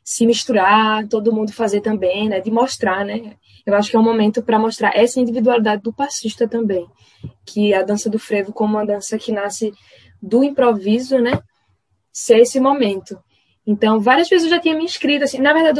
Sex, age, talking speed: female, 10-29, 190 wpm